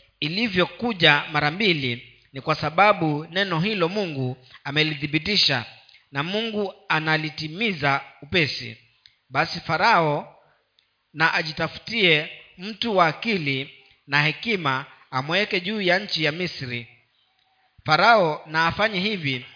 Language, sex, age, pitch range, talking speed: Swahili, male, 40-59, 140-195 Hz, 100 wpm